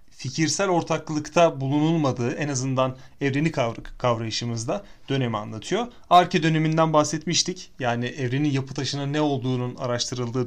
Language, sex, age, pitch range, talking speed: Turkish, male, 30-49, 125-160 Hz, 110 wpm